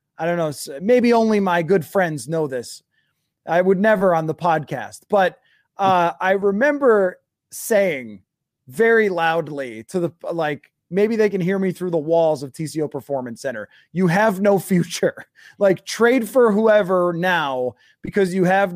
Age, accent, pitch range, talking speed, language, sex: 20-39, American, 155-200 Hz, 160 wpm, English, male